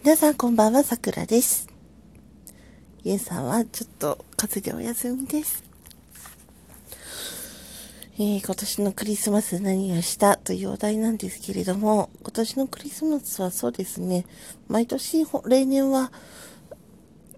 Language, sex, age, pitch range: Japanese, female, 40-59, 175-240 Hz